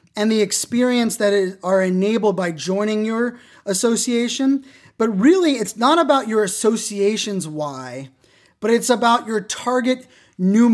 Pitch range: 195-245 Hz